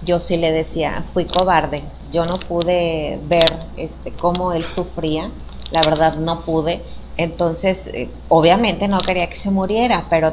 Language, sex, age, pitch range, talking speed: Spanish, female, 30-49, 160-195 Hz, 155 wpm